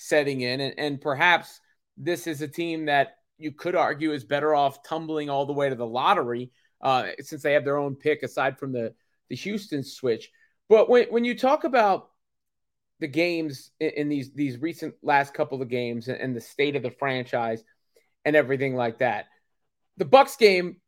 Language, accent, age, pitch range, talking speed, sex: English, American, 30-49, 130-180 Hz, 195 wpm, male